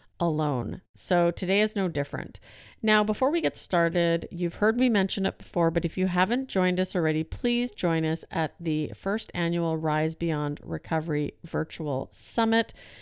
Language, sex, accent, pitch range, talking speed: English, female, American, 165-200 Hz, 165 wpm